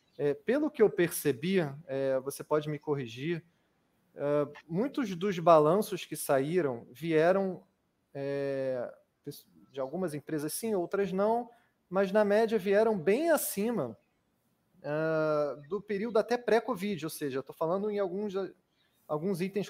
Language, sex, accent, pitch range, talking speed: Portuguese, male, Brazilian, 145-200 Hz, 115 wpm